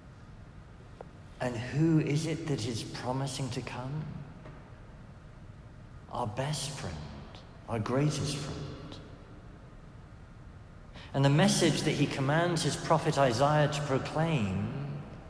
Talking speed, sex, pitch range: 100 wpm, male, 110-145 Hz